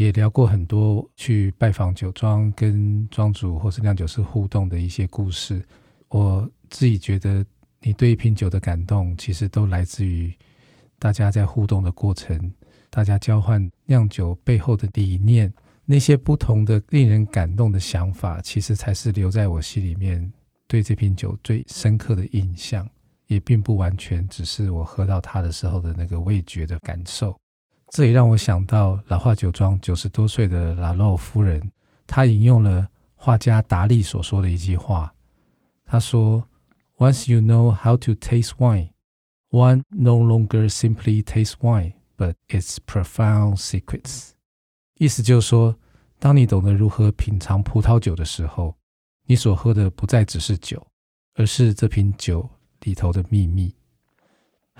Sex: male